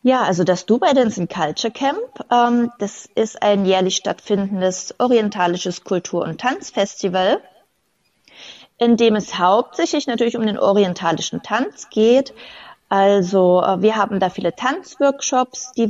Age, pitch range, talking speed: 20-39, 185-235 Hz, 130 wpm